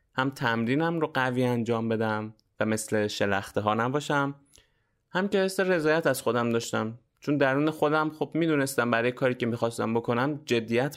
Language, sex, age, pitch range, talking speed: Persian, male, 20-39, 105-135 Hz, 155 wpm